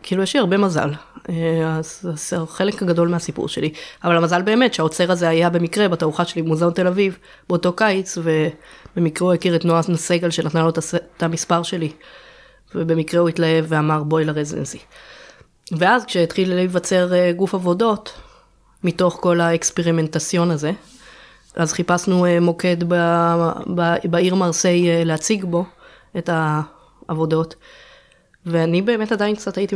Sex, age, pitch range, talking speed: female, 20-39, 160-180 Hz, 135 wpm